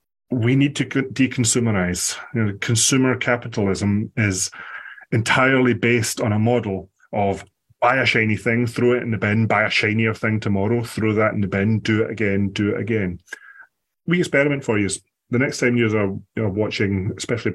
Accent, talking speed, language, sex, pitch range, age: British, 170 wpm, English, male, 100-125 Hz, 30-49